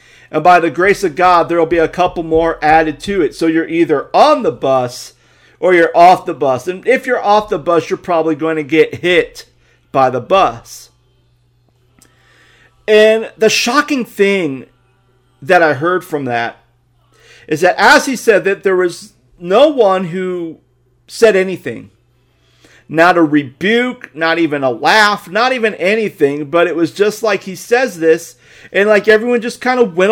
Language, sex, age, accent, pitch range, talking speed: English, male, 40-59, American, 150-220 Hz, 175 wpm